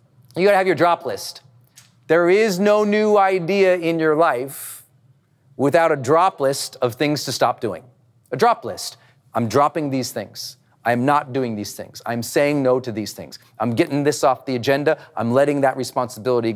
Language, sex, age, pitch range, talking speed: English, male, 40-59, 125-160 Hz, 185 wpm